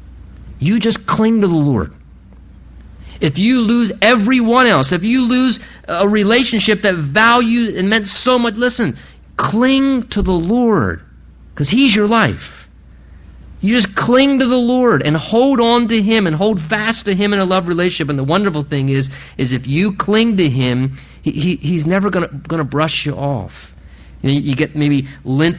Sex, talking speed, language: male, 175 wpm, English